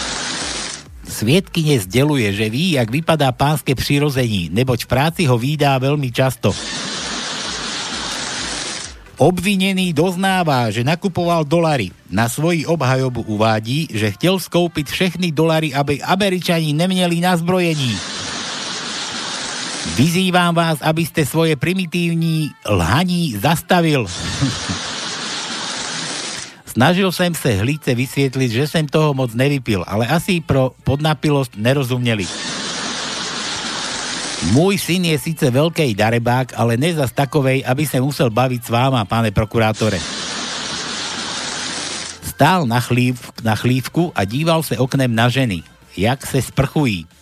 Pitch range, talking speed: 120-165 Hz, 110 wpm